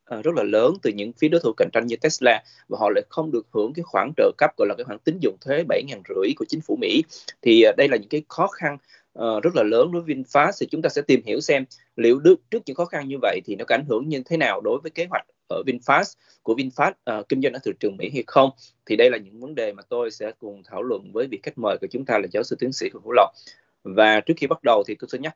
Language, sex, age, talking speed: Vietnamese, male, 20-39, 285 wpm